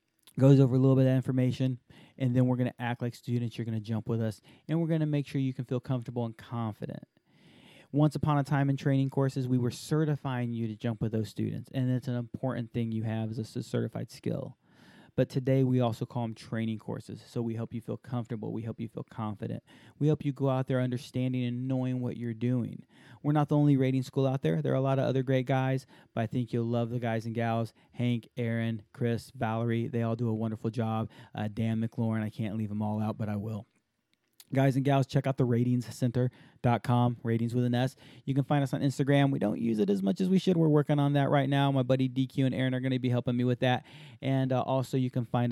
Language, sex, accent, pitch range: English, male, American, 115-140 Hz